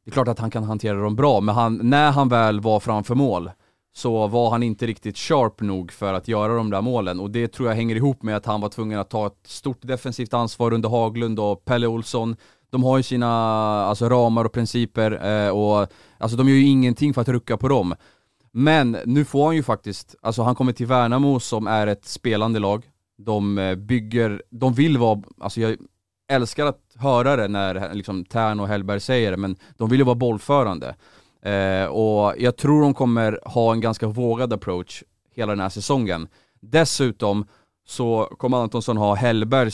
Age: 20-39